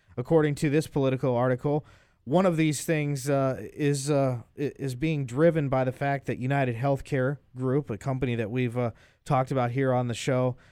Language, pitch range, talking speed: English, 120-140 Hz, 185 wpm